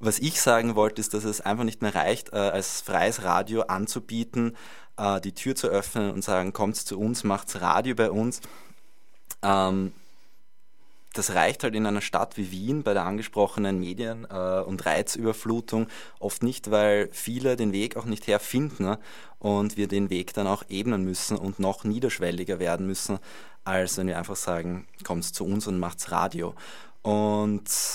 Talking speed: 165 wpm